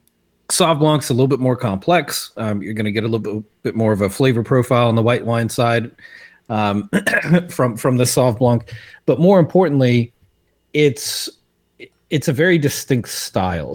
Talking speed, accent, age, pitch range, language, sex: 175 wpm, American, 40-59, 105-135 Hz, English, male